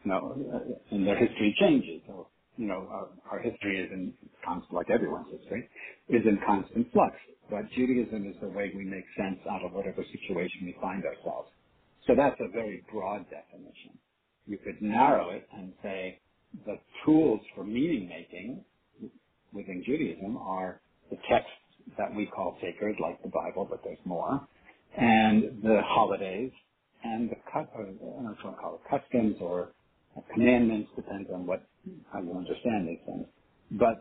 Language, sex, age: English, male, 70-89